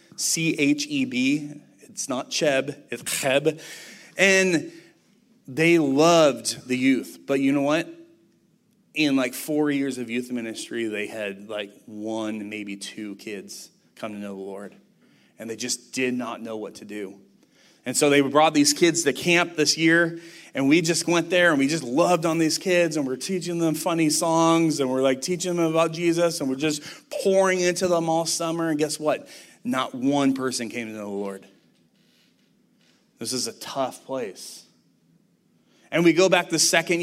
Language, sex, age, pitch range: English, male, 30-49, 135-185 Hz